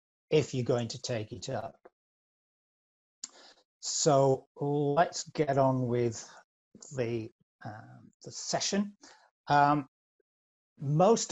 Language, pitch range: English, 120-145 Hz